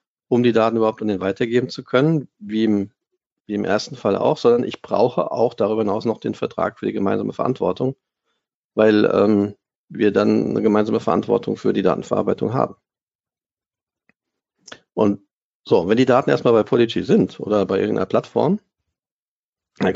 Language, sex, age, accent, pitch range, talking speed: German, male, 50-69, German, 100-120 Hz, 160 wpm